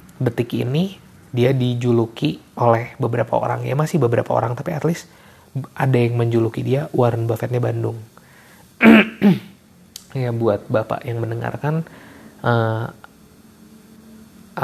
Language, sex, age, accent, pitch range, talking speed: Indonesian, male, 20-39, native, 115-150 Hz, 110 wpm